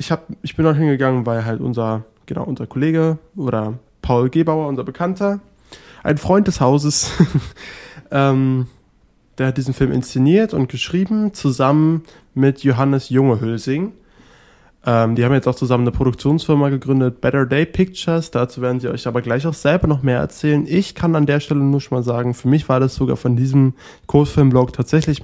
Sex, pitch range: male, 125-150 Hz